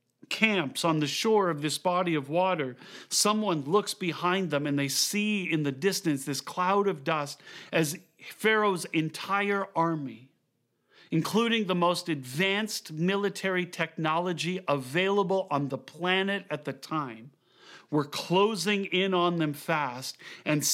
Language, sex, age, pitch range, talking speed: English, male, 40-59, 140-190 Hz, 135 wpm